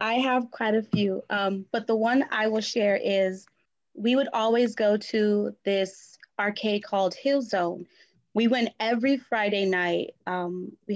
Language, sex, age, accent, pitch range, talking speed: English, female, 20-39, American, 210-255 Hz, 165 wpm